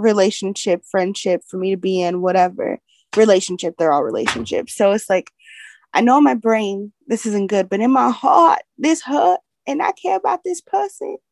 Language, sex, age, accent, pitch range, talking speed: English, female, 20-39, American, 190-245 Hz, 180 wpm